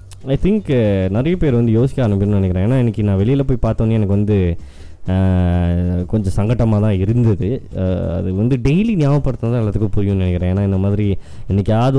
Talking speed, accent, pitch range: 160 wpm, native, 95-110 Hz